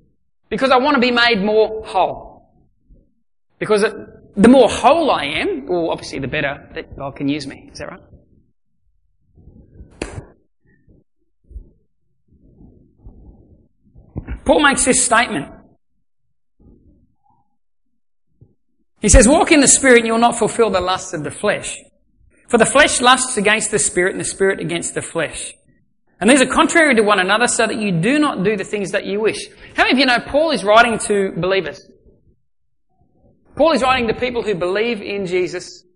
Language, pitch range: English, 195-265 Hz